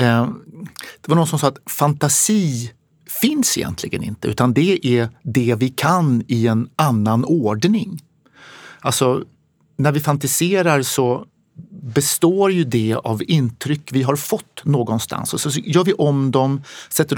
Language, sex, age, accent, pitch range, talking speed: Swedish, male, 60-79, native, 125-165 Hz, 145 wpm